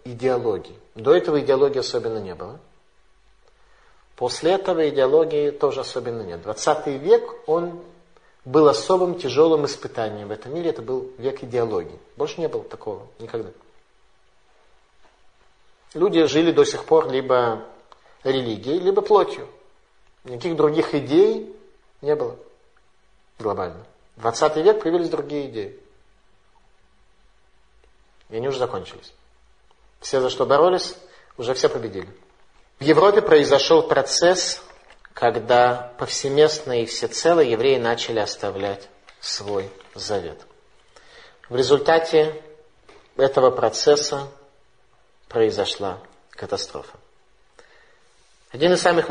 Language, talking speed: Russian, 105 wpm